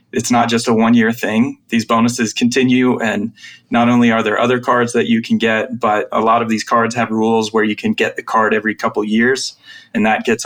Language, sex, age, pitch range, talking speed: English, male, 20-39, 110-125 Hz, 230 wpm